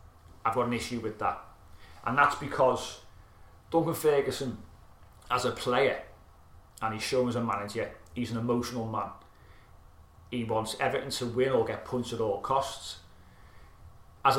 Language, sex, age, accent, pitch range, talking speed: English, male, 30-49, British, 110-130 Hz, 150 wpm